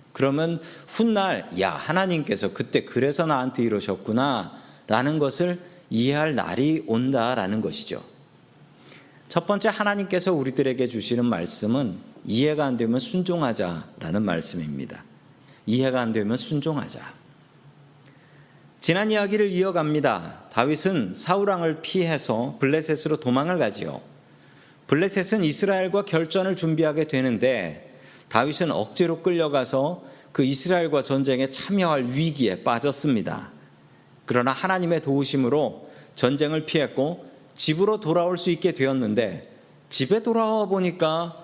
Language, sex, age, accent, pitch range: Korean, male, 40-59, native, 130-175 Hz